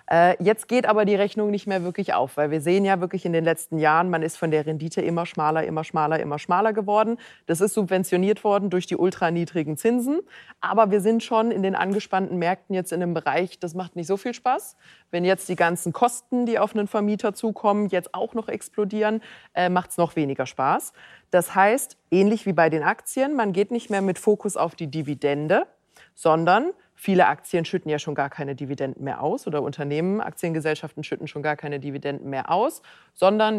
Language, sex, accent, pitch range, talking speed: German, female, German, 165-210 Hz, 200 wpm